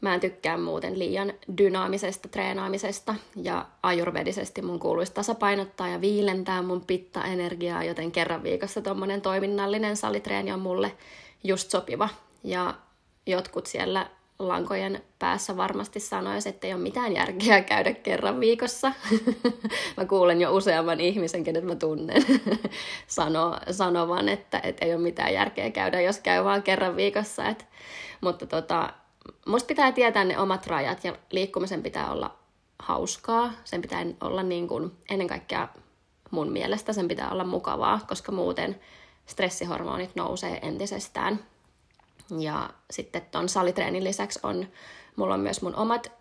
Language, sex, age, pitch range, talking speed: Finnish, female, 20-39, 175-215 Hz, 140 wpm